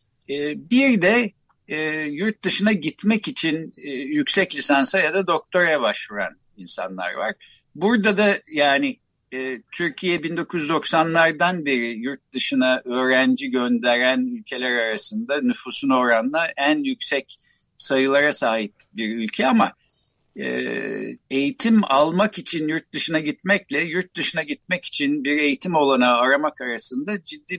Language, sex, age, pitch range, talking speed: Turkish, male, 60-79, 130-200 Hz, 120 wpm